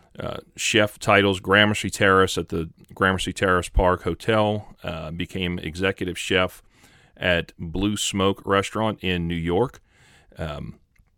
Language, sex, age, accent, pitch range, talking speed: English, male, 40-59, American, 85-100 Hz, 125 wpm